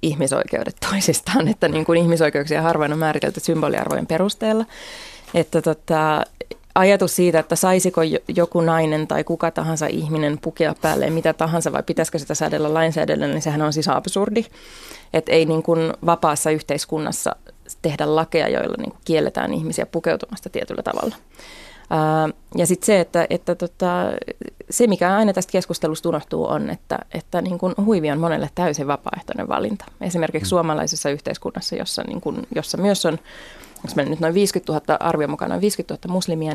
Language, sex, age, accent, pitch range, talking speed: Finnish, female, 20-39, native, 155-185 Hz, 155 wpm